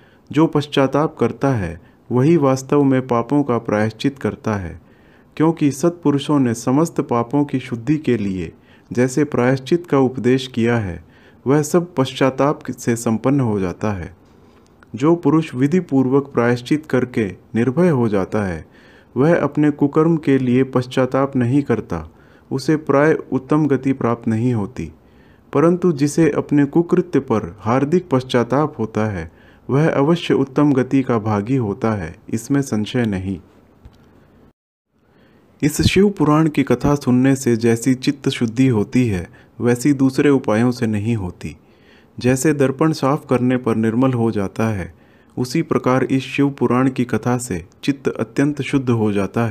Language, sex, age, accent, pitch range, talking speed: Hindi, male, 40-59, native, 110-140 Hz, 145 wpm